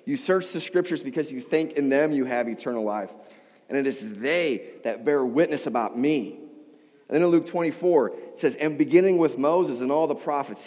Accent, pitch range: American, 150-195 Hz